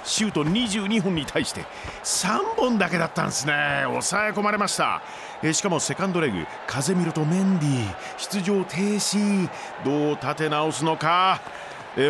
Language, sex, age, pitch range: Japanese, male, 40-59, 125-195 Hz